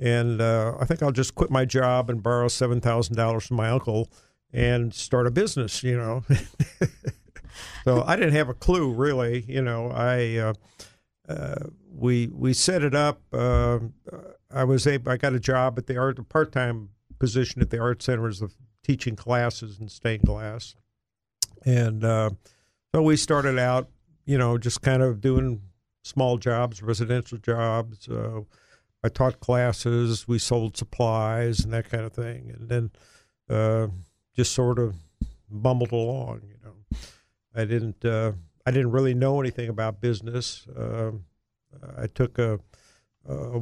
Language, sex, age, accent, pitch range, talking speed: English, male, 60-79, American, 110-125 Hz, 165 wpm